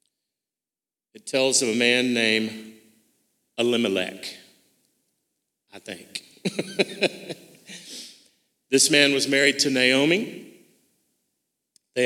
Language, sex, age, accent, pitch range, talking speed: English, male, 40-59, American, 110-135 Hz, 80 wpm